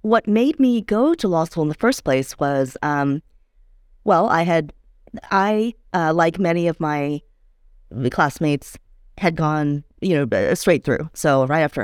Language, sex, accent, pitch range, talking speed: English, female, American, 145-190 Hz, 160 wpm